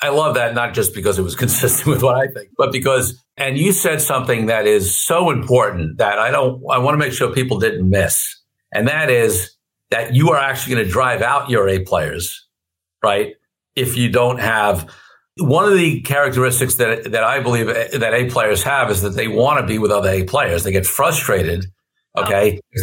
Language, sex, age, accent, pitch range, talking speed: English, male, 50-69, American, 105-135 Hz, 210 wpm